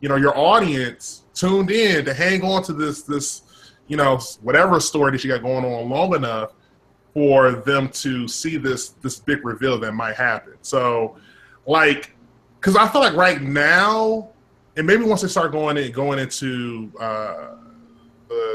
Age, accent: 20-39, American